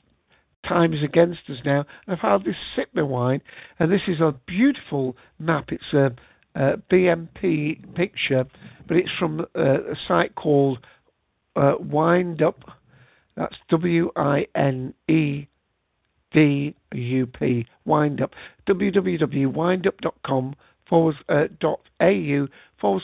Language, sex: English, male